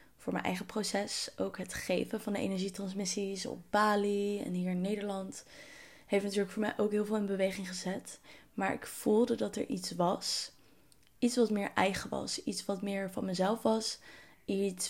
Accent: Dutch